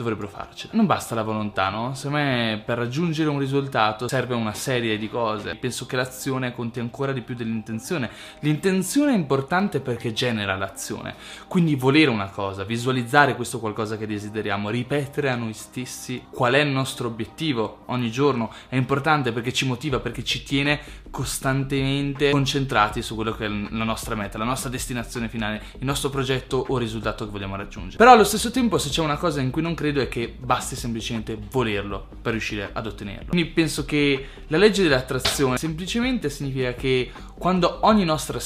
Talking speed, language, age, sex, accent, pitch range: 180 wpm, Italian, 20-39, male, native, 115-145 Hz